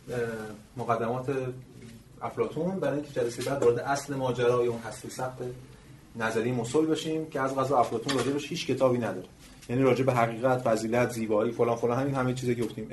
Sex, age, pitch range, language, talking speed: male, 30-49, 115-140 Hz, Persian, 155 wpm